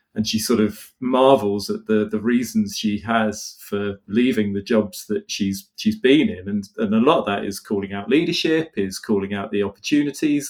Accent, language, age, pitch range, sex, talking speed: British, English, 40-59, 105-170 Hz, male, 200 wpm